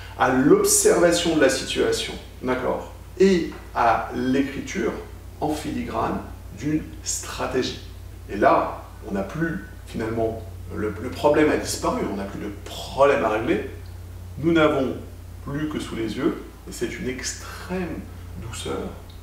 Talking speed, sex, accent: 135 wpm, male, French